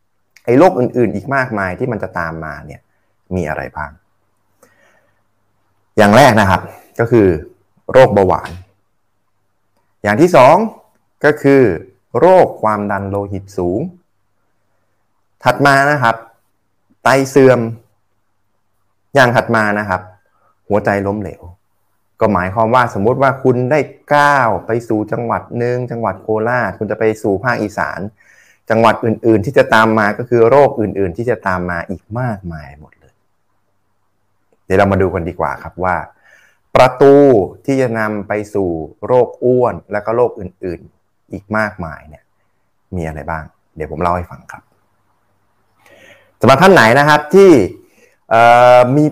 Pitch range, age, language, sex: 95-130 Hz, 20-39, Thai, male